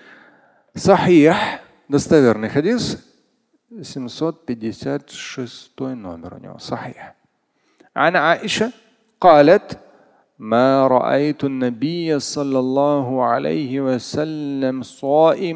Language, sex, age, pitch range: Russian, male, 40-59, 130-185 Hz